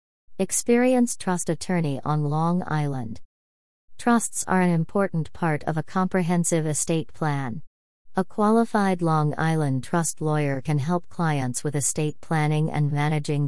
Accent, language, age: American, English, 40-59